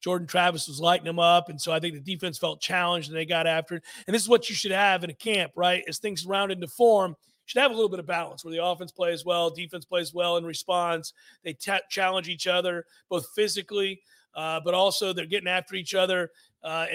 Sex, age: male, 40-59